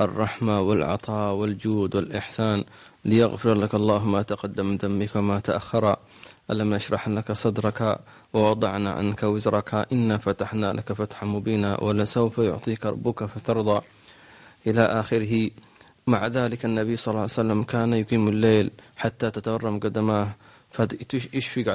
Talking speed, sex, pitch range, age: 120 wpm, male, 105-120 Hz, 20-39